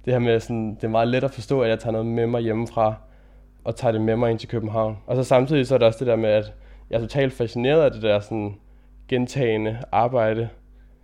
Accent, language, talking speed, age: native, Danish, 250 wpm, 20-39